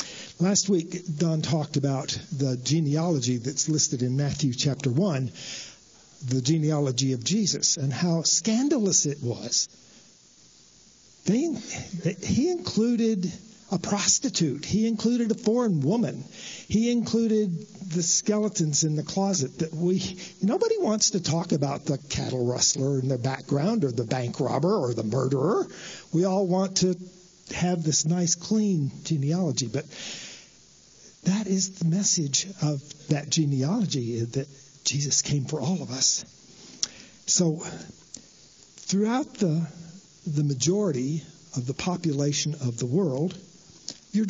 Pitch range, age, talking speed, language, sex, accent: 145-195 Hz, 50-69, 130 wpm, English, male, American